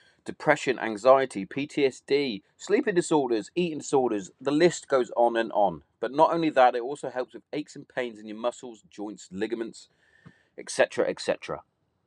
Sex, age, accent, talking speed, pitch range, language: male, 30-49, British, 155 wpm, 115-160 Hz, English